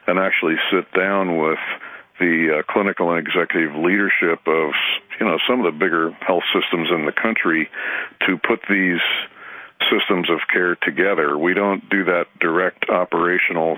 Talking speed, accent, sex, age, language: 155 wpm, American, male, 50-69, English